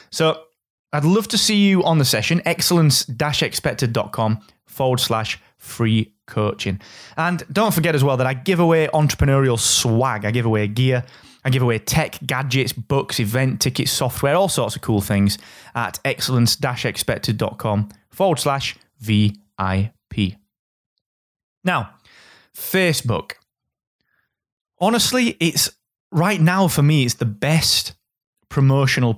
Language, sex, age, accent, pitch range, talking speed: English, male, 20-39, British, 110-155 Hz, 125 wpm